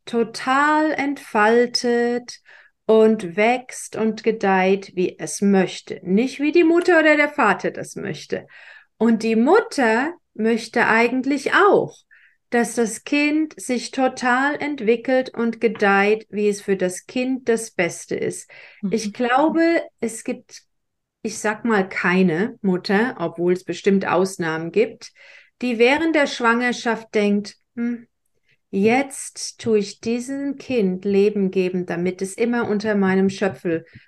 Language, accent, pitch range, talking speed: German, German, 195-255 Hz, 130 wpm